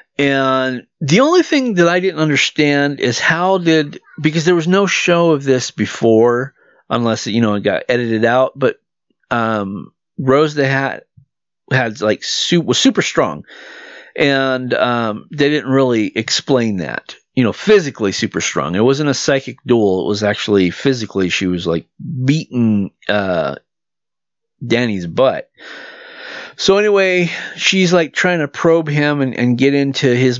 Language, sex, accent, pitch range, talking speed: English, male, American, 120-165 Hz, 155 wpm